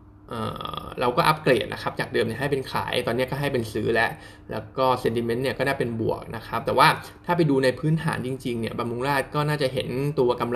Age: 20-39